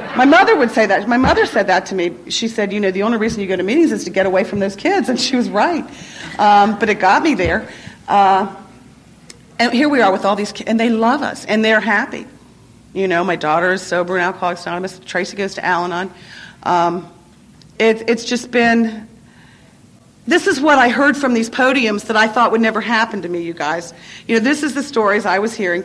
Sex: female